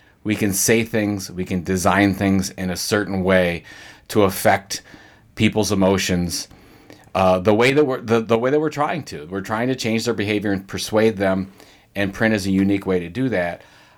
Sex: male